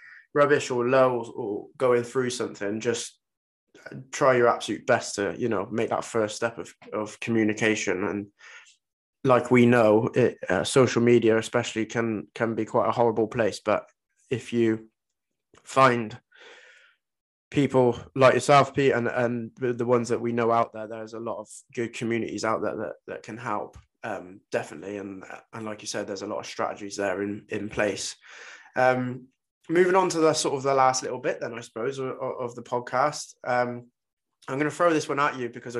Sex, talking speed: male, 185 wpm